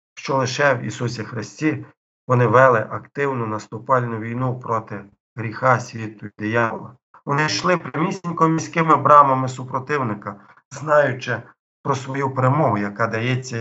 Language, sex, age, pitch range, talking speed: Ukrainian, male, 50-69, 110-135 Hz, 120 wpm